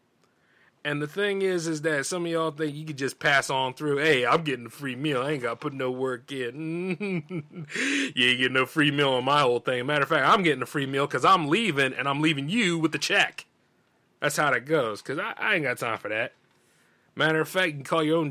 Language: English